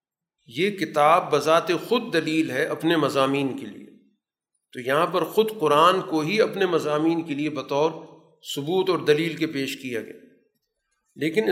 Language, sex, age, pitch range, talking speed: Urdu, male, 50-69, 145-180 Hz, 155 wpm